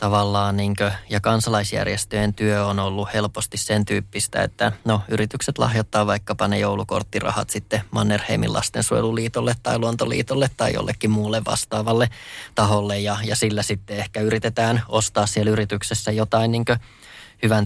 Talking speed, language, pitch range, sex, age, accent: 135 wpm, Finnish, 105-110 Hz, male, 20-39, native